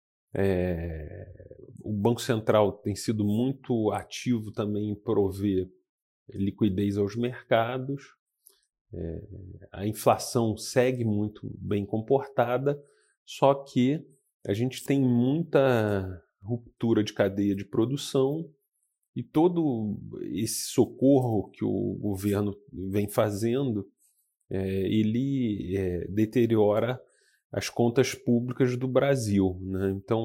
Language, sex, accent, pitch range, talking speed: Portuguese, male, Brazilian, 100-125 Hz, 95 wpm